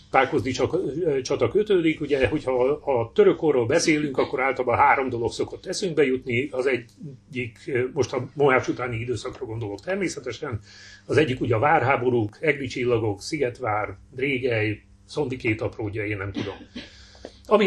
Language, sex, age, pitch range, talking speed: Hungarian, male, 40-59, 105-130 Hz, 130 wpm